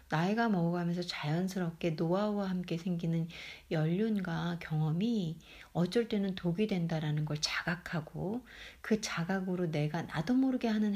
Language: Korean